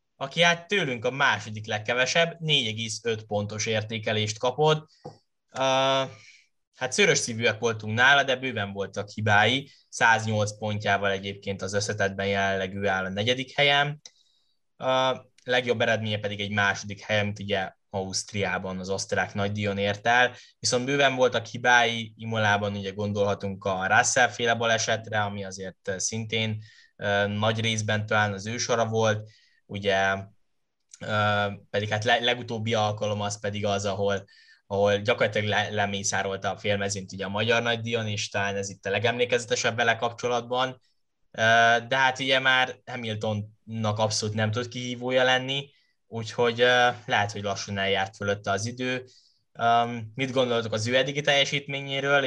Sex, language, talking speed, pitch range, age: male, Hungarian, 130 wpm, 100-125 Hz, 10-29